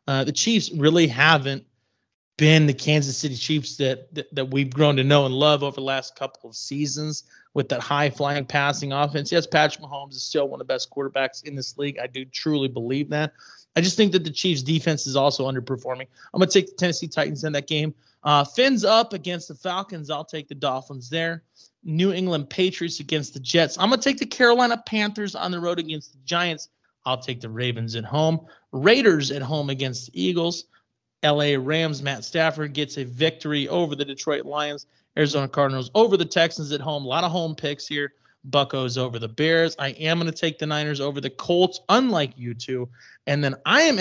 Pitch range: 135-165 Hz